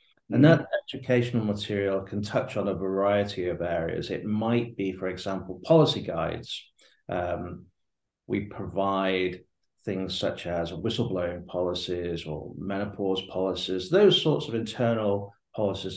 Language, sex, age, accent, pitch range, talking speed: English, male, 50-69, British, 95-125 Hz, 130 wpm